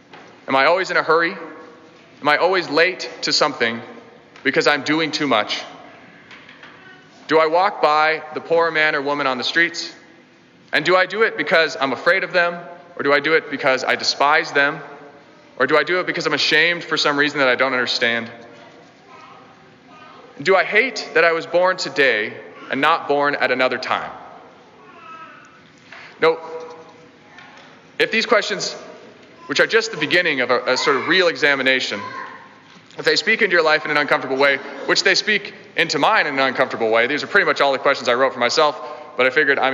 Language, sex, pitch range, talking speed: English, male, 135-175 Hz, 190 wpm